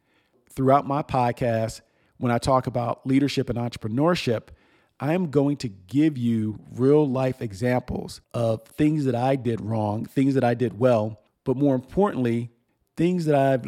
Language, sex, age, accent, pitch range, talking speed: English, male, 40-59, American, 115-140 Hz, 160 wpm